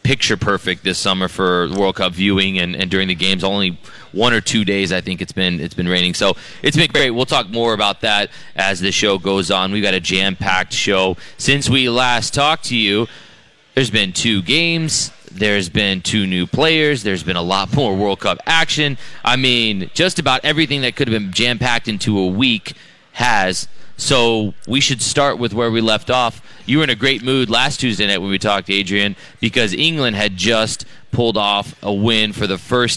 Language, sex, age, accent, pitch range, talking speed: English, male, 30-49, American, 95-120 Hz, 210 wpm